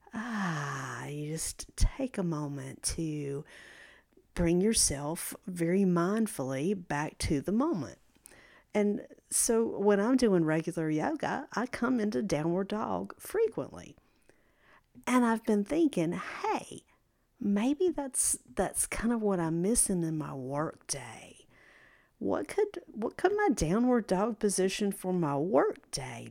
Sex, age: female, 50-69